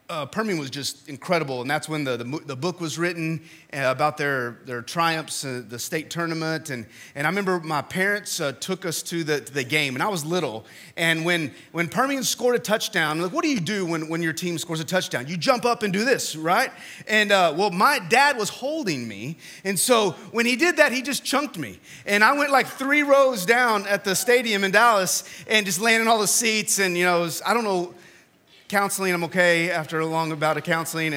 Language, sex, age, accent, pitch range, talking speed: English, male, 30-49, American, 165-225 Hz, 230 wpm